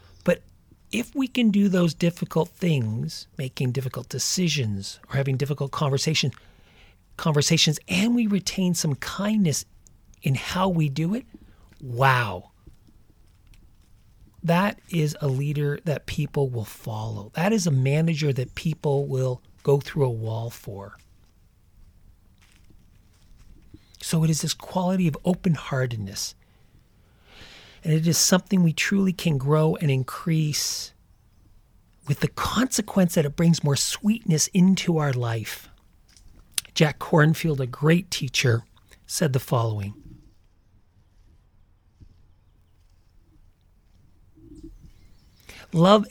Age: 40-59